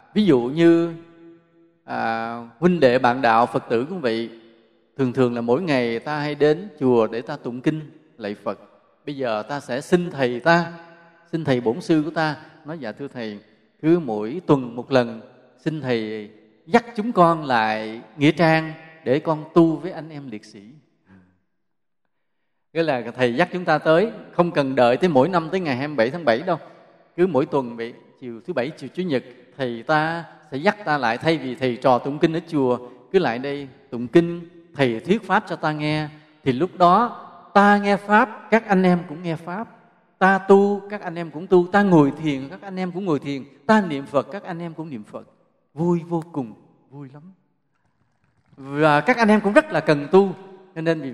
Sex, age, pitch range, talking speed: male, 20-39, 125-170 Hz, 205 wpm